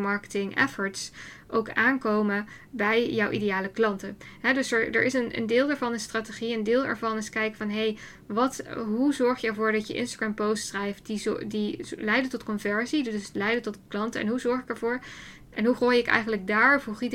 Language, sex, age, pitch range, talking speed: English, female, 10-29, 200-235 Hz, 190 wpm